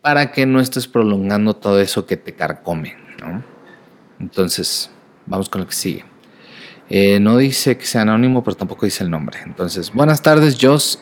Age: 40-59